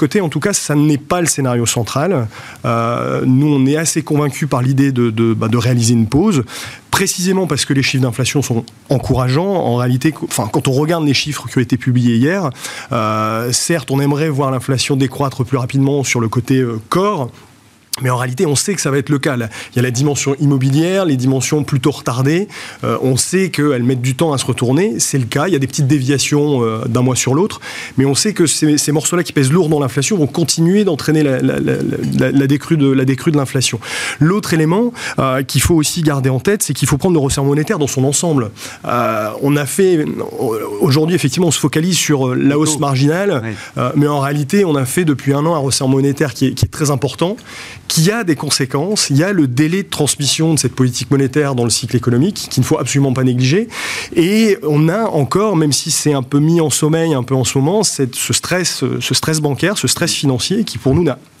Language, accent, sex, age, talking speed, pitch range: French, French, male, 30-49, 230 wpm, 130-160 Hz